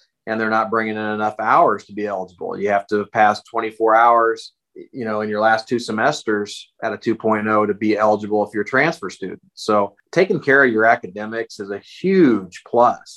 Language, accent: English, American